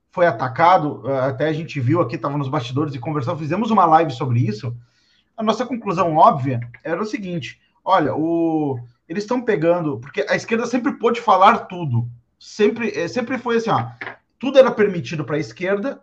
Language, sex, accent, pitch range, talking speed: Portuguese, male, Brazilian, 145-205 Hz, 175 wpm